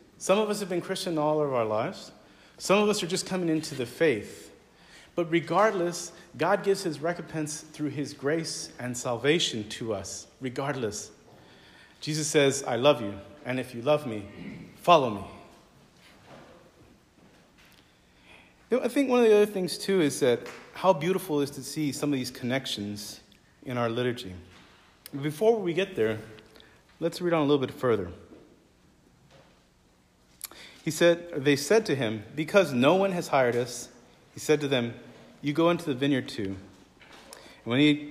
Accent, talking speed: American, 160 wpm